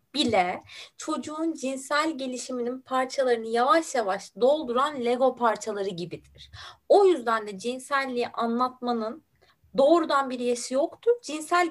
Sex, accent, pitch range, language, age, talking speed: female, native, 225-315 Hz, Turkish, 30-49, 110 wpm